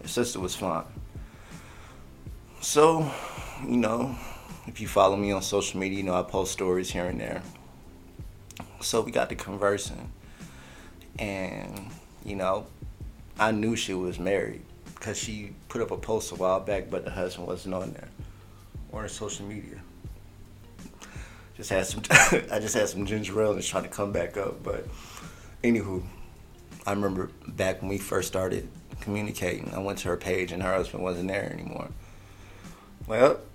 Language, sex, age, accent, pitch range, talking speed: English, male, 30-49, American, 90-105 Hz, 165 wpm